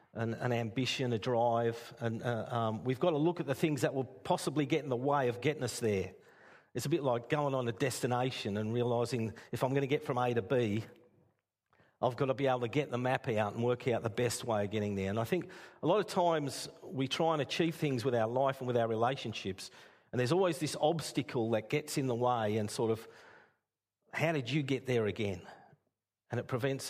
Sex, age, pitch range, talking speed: male, 50-69, 110-135 Hz, 235 wpm